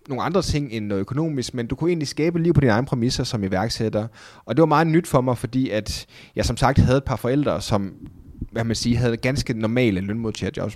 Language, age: Danish, 30-49